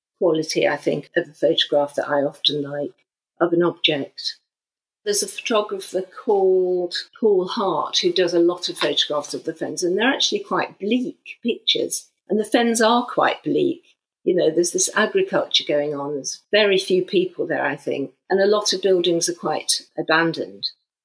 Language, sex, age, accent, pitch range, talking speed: English, female, 50-69, British, 170-225 Hz, 175 wpm